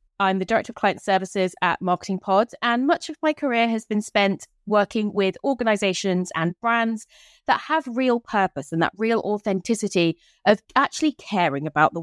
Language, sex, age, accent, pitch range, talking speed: English, female, 20-39, British, 175-240 Hz, 175 wpm